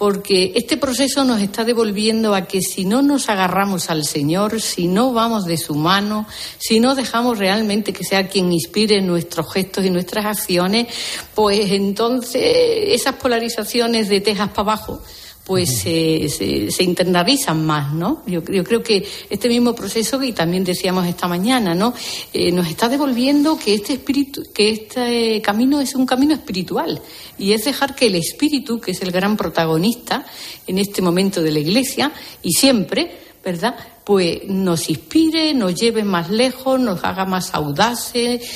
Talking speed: 165 wpm